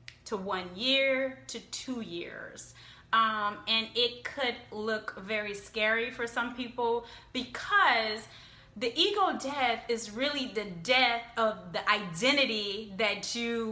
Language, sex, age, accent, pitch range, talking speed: English, female, 20-39, American, 205-255 Hz, 125 wpm